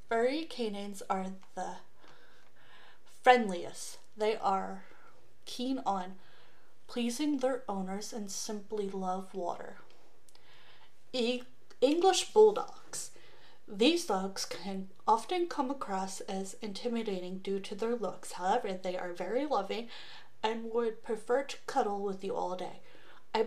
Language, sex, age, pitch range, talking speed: English, female, 30-49, 195-255 Hz, 115 wpm